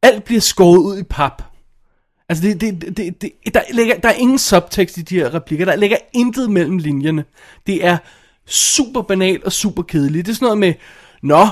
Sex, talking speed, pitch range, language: male, 205 wpm, 150-195 Hz, Danish